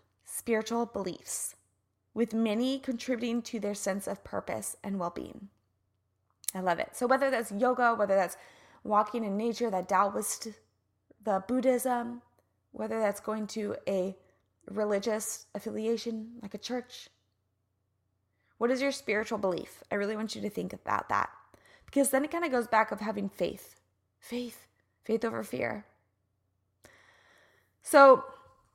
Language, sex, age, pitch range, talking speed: English, female, 20-39, 185-240 Hz, 140 wpm